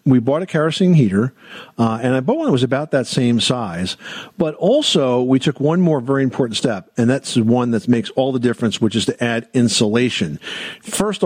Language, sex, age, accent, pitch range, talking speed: English, male, 50-69, American, 120-150 Hz, 210 wpm